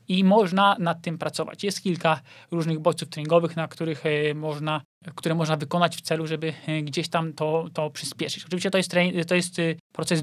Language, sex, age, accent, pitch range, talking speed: Polish, male, 20-39, native, 160-180 Hz, 180 wpm